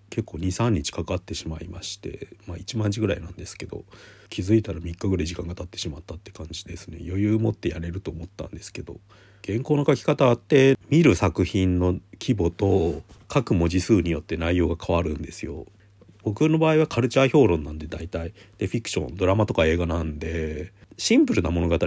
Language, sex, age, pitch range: Japanese, male, 40-59, 85-110 Hz